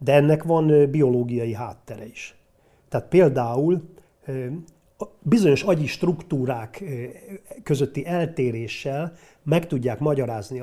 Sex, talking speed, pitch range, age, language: male, 90 wpm, 115-155 Hz, 40-59, Hungarian